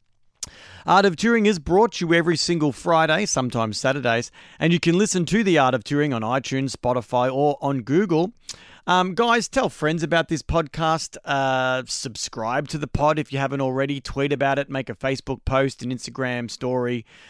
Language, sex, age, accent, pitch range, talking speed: English, male, 40-59, Australian, 125-165 Hz, 185 wpm